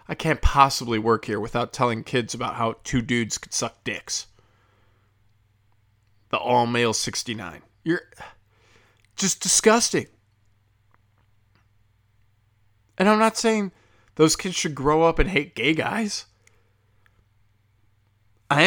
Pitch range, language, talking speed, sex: 105-145 Hz, English, 115 wpm, male